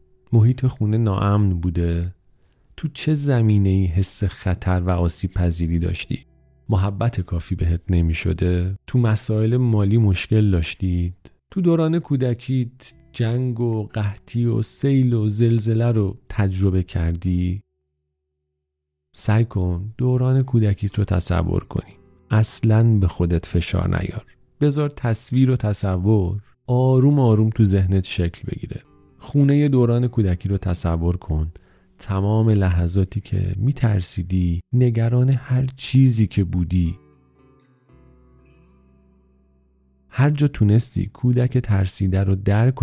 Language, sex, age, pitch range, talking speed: Persian, male, 40-59, 90-120 Hz, 115 wpm